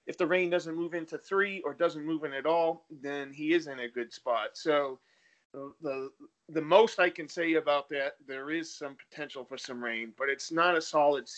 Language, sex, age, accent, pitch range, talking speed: English, male, 30-49, American, 135-175 Hz, 220 wpm